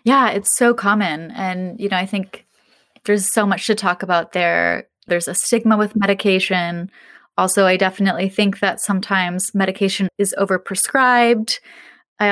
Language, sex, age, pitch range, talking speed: English, female, 20-39, 185-215 Hz, 150 wpm